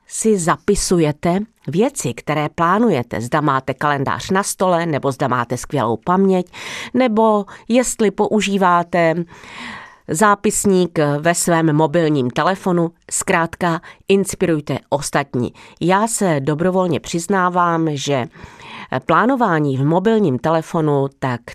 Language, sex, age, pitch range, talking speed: Czech, female, 40-59, 140-185 Hz, 100 wpm